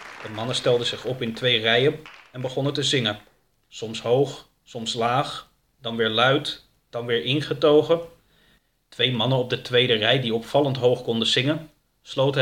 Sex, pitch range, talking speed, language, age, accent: male, 115-150 Hz, 165 wpm, Dutch, 30-49, Dutch